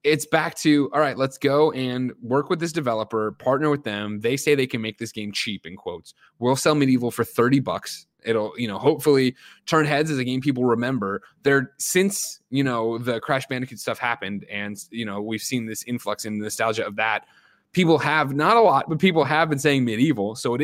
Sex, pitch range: male, 110-140 Hz